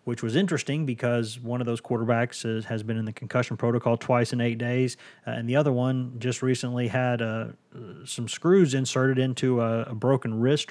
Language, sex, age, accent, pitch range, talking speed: English, male, 30-49, American, 120-145 Hz, 185 wpm